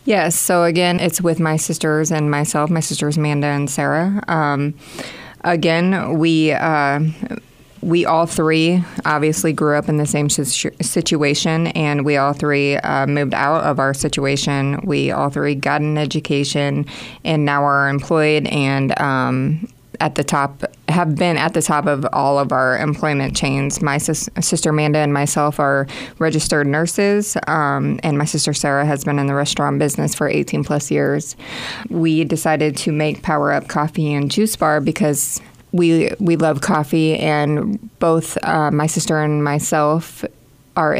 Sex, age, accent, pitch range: female, 20-39, American, 145-165 Hz